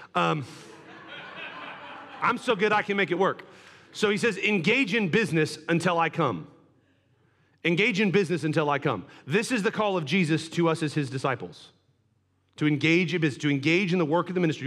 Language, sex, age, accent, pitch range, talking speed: English, male, 40-59, American, 135-185 Hz, 190 wpm